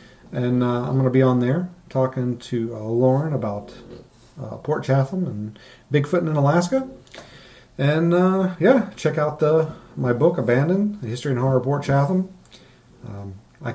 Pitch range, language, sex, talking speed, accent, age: 120-145 Hz, English, male, 165 wpm, American, 40-59